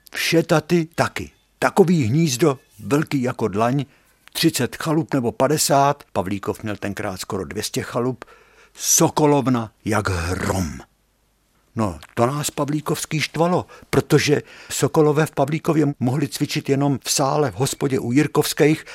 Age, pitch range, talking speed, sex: 60-79, 110-150 Hz, 120 wpm, male